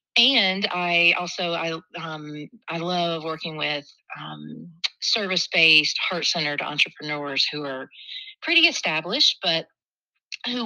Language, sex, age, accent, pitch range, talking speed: English, female, 30-49, American, 150-175 Hz, 105 wpm